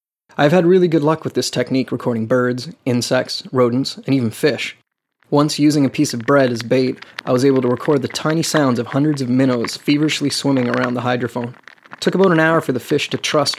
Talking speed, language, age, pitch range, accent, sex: 220 wpm, English, 30-49, 125-145 Hz, American, male